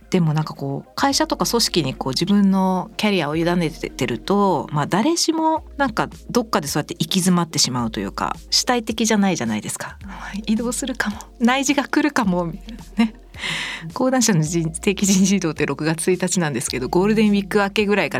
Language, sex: Japanese, female